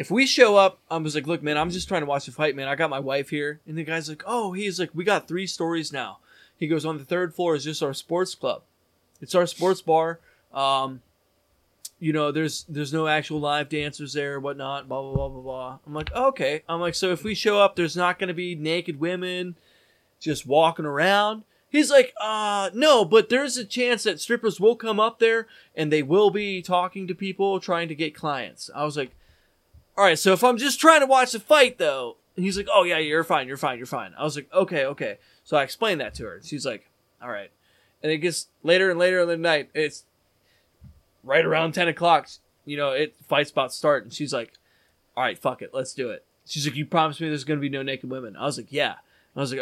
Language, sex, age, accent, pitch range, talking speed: English, male, 20-39, American, 145-190 Hz, 245 wpm